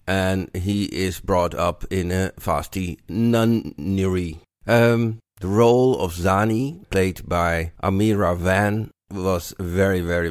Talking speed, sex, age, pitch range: 115 wpm, male, 50-69, 85-100 Hz